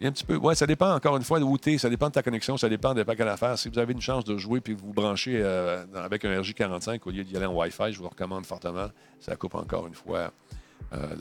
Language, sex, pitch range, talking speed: French, male, 95-120 Hz, 285 wpm